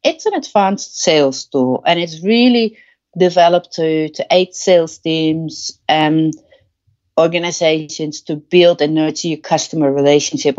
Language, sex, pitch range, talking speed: English, female, 145-190 Hz, 130 wpm